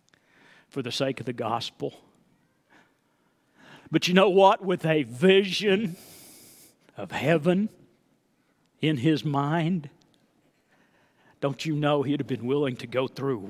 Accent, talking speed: American, 125 wpm